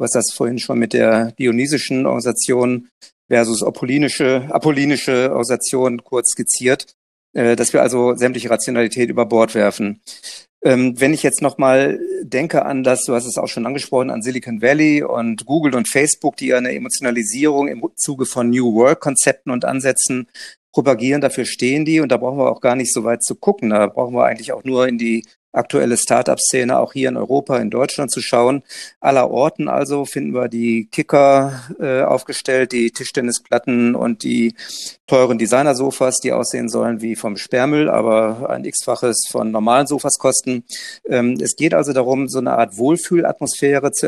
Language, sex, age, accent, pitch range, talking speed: German, male, 50-69, German, 120-140 Hz, 170 wpm